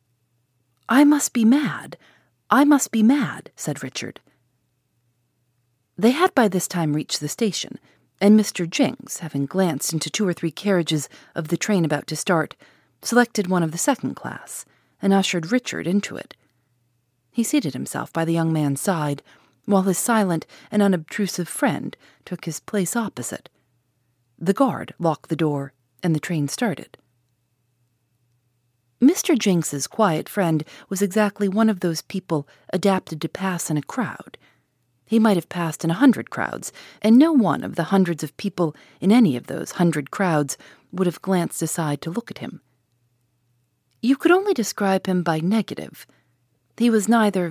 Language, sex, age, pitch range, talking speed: English, female, 40-59, 140-200 Hz, 160 wpm